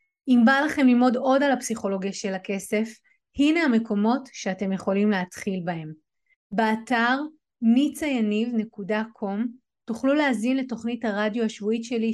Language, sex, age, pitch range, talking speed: Hebrew, female, 30-49, 200-255 Hz, 115 wpm